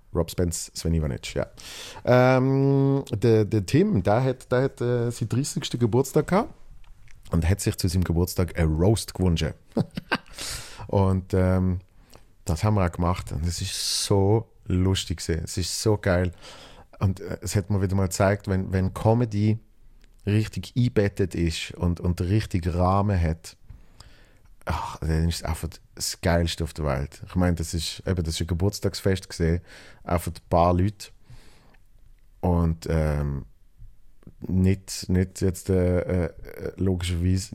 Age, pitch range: 40-59, 90-110 Hz